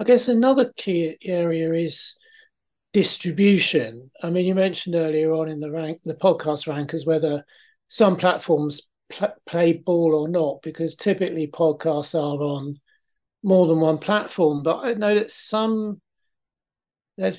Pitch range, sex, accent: 150-180 Hz, male, British